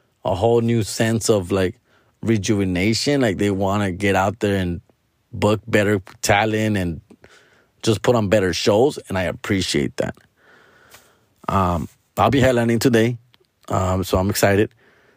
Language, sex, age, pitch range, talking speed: English, male, 30-49, 100-125 Hz, 145 wpm